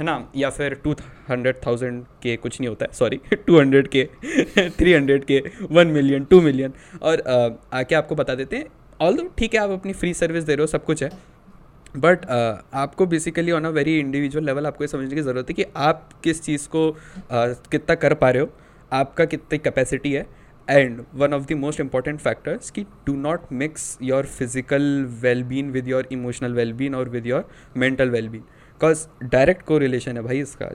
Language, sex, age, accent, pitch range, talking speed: Hindi, male, 20-39, native, 125-155 Hz, 190 wpm